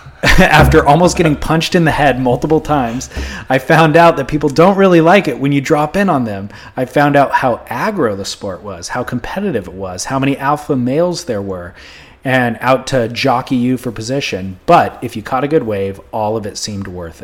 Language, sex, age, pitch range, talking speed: English, male, 30-49, 110-145 Hz, 210 wpm